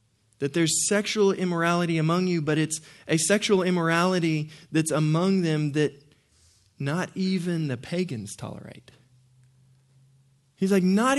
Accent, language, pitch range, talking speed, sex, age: American, English, 135-195 Hz, 125 wpm, male, 20-39